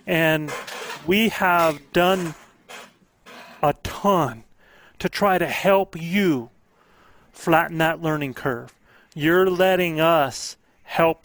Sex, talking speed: male, 100 wpm